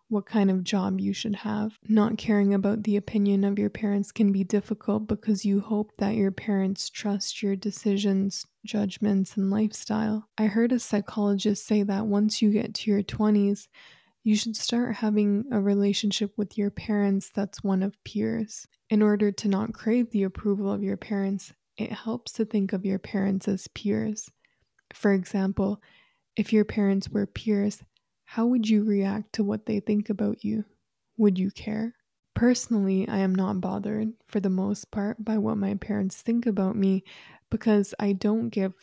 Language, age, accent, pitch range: English, 20-39, American, 195-215 Hz